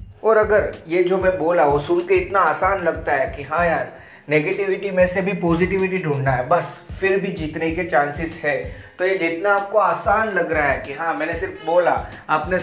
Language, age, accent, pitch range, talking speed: Hindi, 20-39, native, 155-190 Hz, 210 wpm